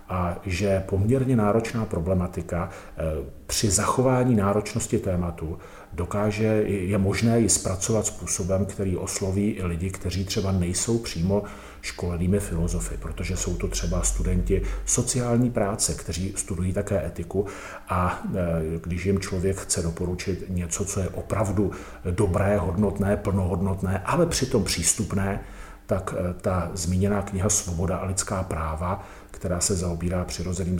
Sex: male